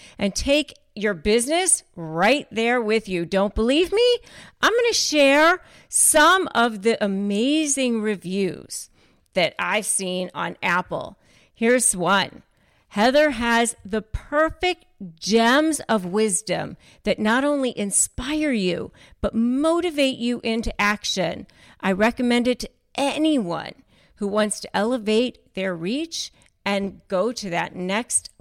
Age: 40-59